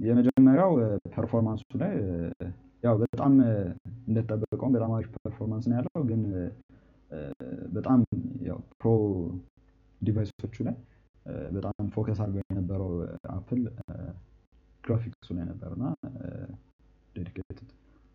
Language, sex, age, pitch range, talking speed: English, male, 20-39, 90-120 Hz, 75 wpm